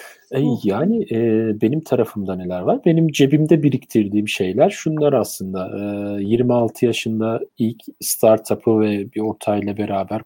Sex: male